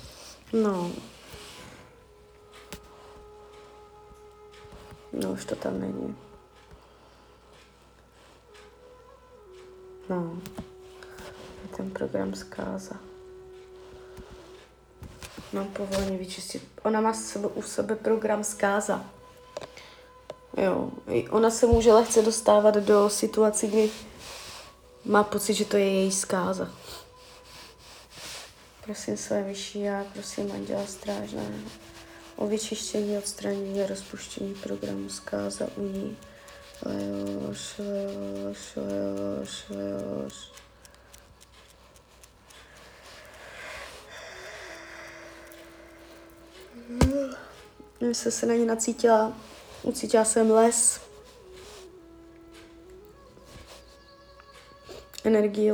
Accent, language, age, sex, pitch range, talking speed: native, Czech, 30-49, female, 195-325 Hz, 70 wpm